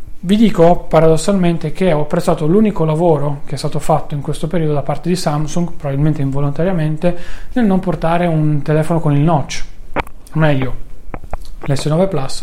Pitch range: 150-175 Hz